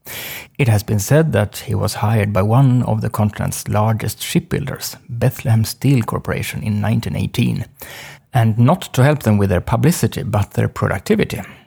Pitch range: 110-140 Hz